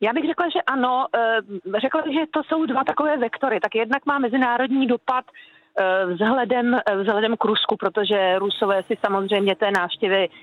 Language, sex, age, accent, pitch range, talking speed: Czech, female, 40-59, native, 195-240 Hz, 155 wpm